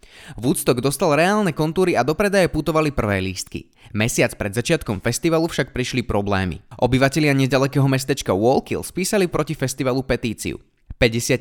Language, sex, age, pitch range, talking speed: Slovak, male, 20-39, 120-165 Hz, 135 wpm